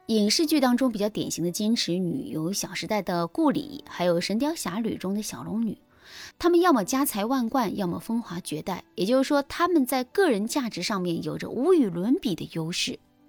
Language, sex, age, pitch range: Chinese, female, 20-39, 185-285 Hz